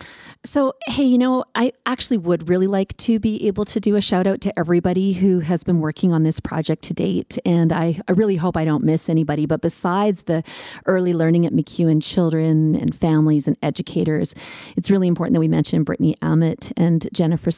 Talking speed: 200 wpm